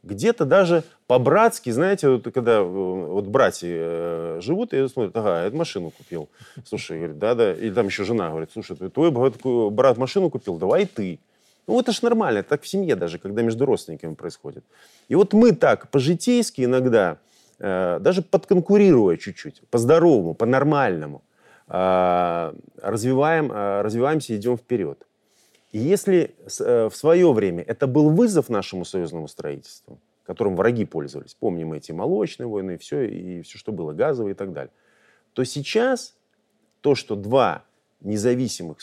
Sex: male